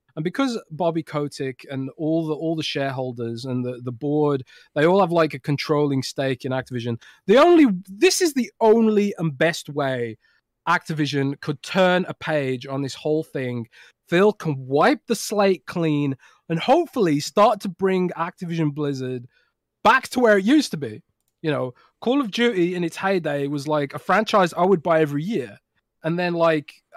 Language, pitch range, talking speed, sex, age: English, 140-190 Hz, 180 wpm, male, 20-39